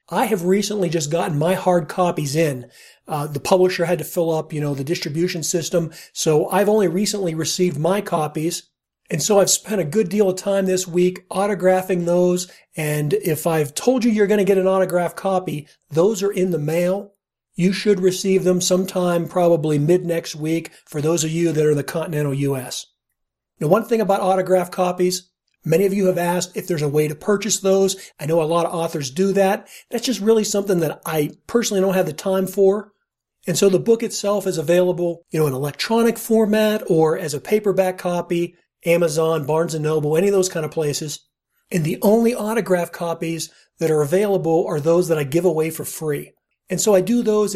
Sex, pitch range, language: male, 160-195 Hz, English